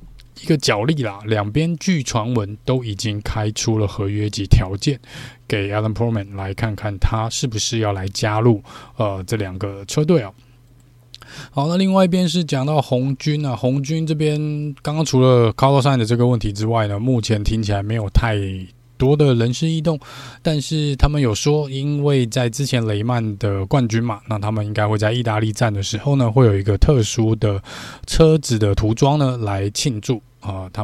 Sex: male